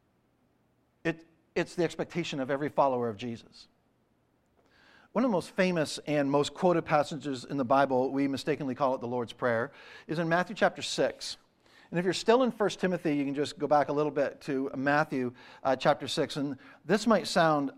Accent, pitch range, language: American, 130-170 Hz, English